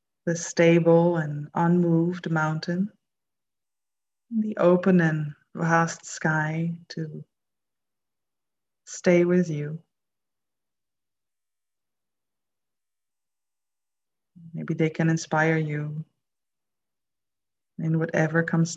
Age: 20-39